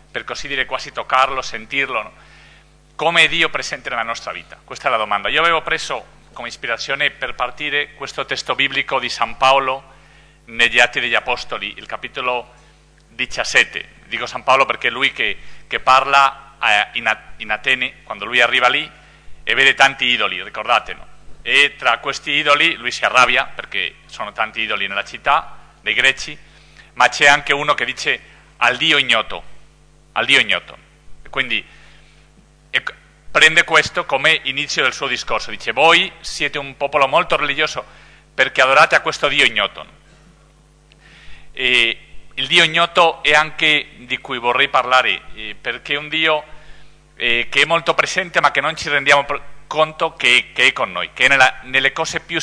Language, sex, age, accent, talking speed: Italian, male, 40-59, Spanish, 165 wpm